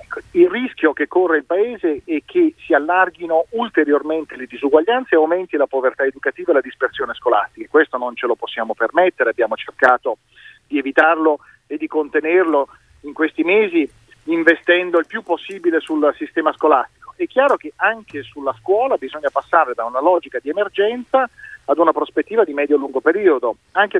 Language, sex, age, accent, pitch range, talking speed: Italian, male, 40-59, native, 140-195 Hz, 165 wpm